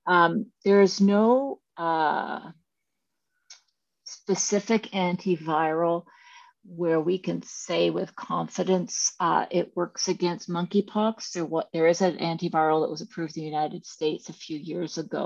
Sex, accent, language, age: female, American, English, 50-69